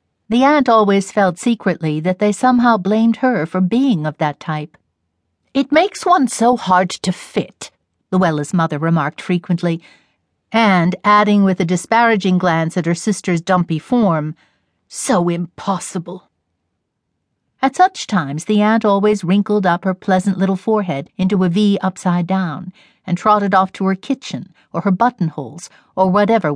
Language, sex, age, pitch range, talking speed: English, female, 50-69, 165-220 Hz, 150 wpm